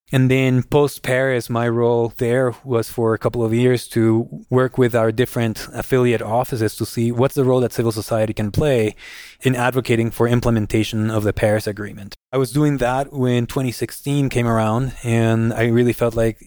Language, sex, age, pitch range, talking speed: English, male, 20-39, 110-120 Hz, 180 wpm